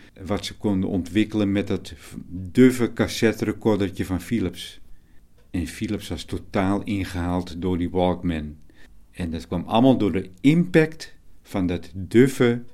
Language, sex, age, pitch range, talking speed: Dutch, male, 50-69, 90-110 Hz, 130 wpm